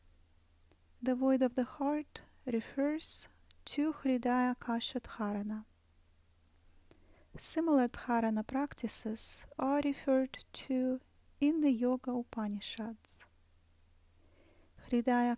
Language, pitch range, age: English, 225-265 Hz, 30-49